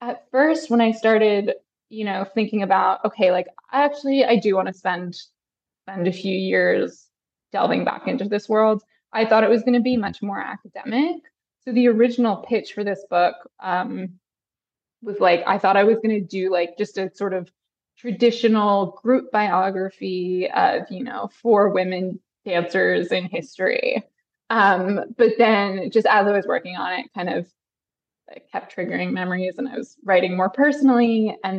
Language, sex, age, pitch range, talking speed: English, female, 20-39, 190-240 Hz, 175 wpm